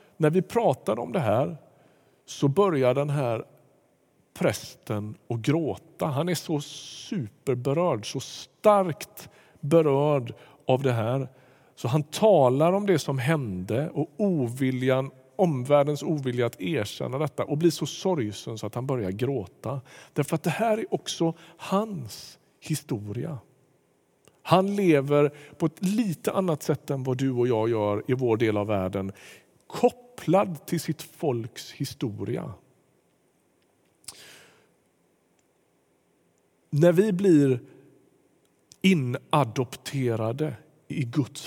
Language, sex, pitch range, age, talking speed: Swedish, male, 125-165 Hz, 50-69, 120 wpm